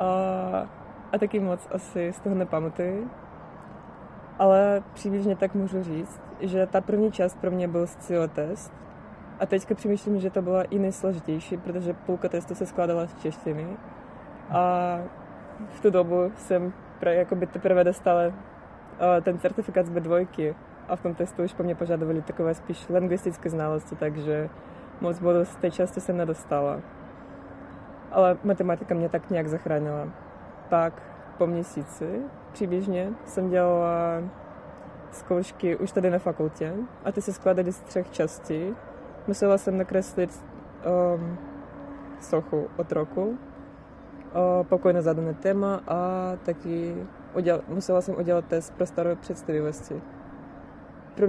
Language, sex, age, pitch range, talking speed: Czech, female, 20-39, 170-190 Hz, 130 wpm